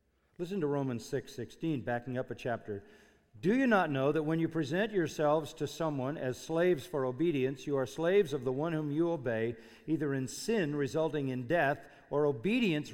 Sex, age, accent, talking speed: male, 50-69, American, 190 wpm